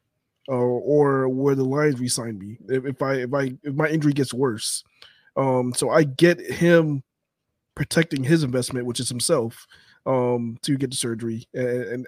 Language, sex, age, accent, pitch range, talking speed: English, male, 20-39, American, 125-150 Hz, 170 wpm